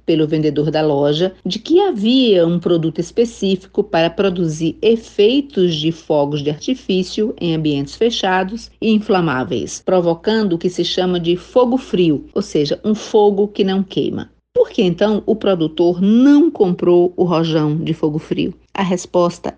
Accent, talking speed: Brazilian, 155 wpm